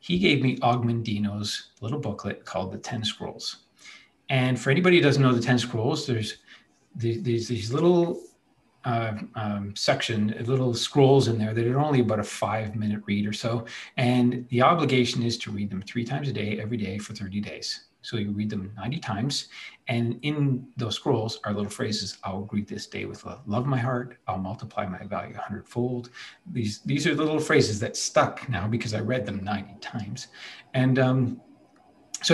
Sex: male